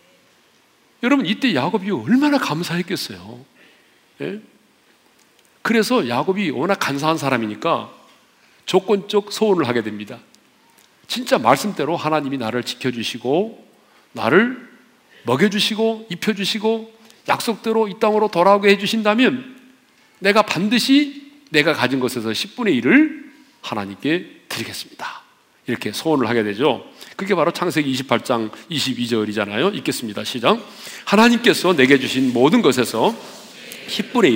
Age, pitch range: 40-59, 140-235 Hz